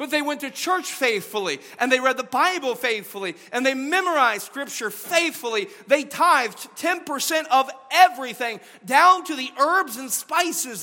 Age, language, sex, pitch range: 40-59, English, male, 230-320 Hz